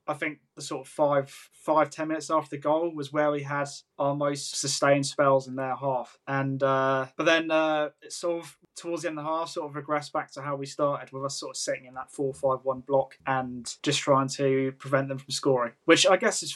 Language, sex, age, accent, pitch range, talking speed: English, male, 20-39, British, 135-155 Hz, 245 wpm